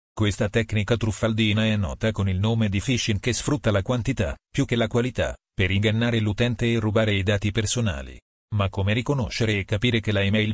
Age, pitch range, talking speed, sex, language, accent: 40-59, 105-120 Hz, 195 wpm, male, Italian, native